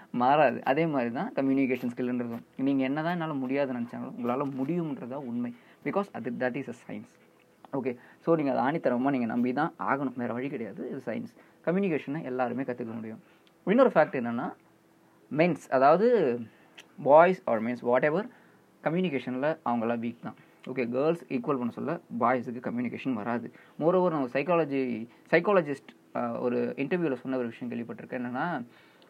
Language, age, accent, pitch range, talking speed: Tamil, 20-39, native, 120-165 Hz, 140 wpm